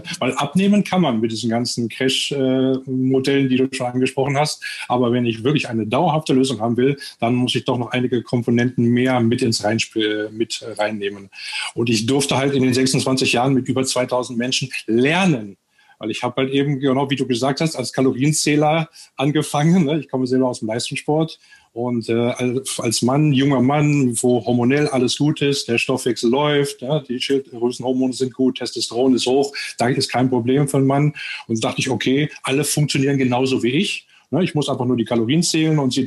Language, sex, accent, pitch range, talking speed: German, male, German, 120-140 Hz, 190 wpm